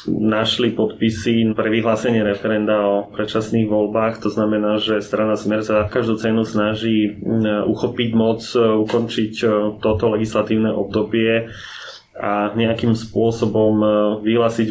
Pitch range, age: 105-115 Hz, 20-39